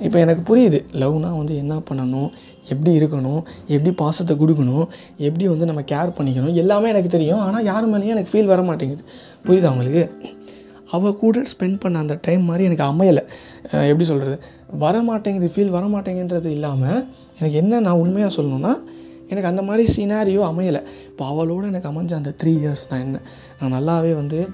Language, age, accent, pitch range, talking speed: Tamil, 20-39, native, 145-185 Hz, 165 wpm